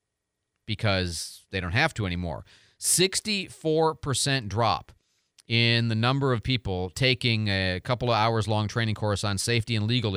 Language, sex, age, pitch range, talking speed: English, male, 30-49, 105-135 Hz, 155 wpm